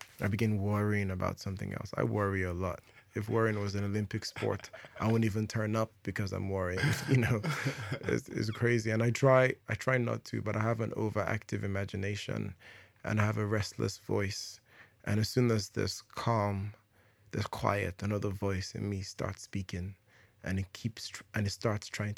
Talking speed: 185 wpm